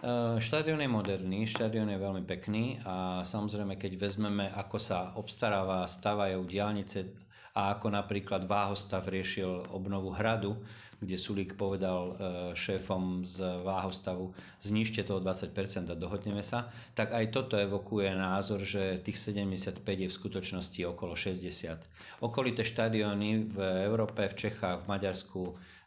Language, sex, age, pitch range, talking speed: Slovak, male, 40-59, 95-105 Hz, 130 wpm